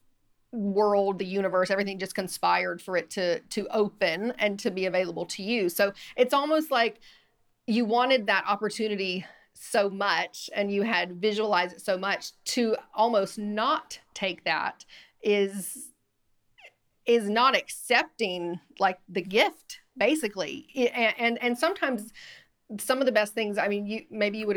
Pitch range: 190-230 Hz